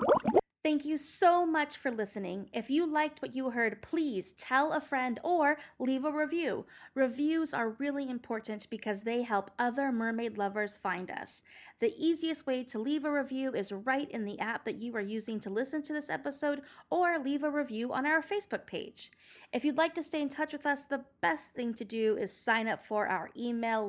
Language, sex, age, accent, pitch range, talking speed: English, female, 30-49, American, 220-285 Hz, 205 wpm